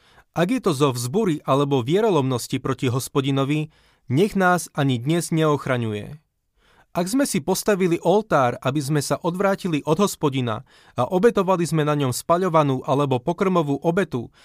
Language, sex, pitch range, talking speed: Slovak, male, 130-170 Hz, 140 wpm